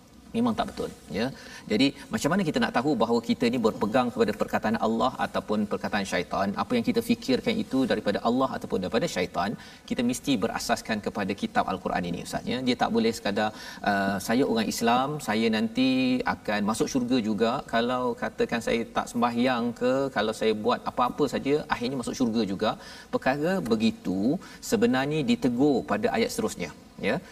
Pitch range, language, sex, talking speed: 190-250 Hz, Malayalam, male, 165 wpm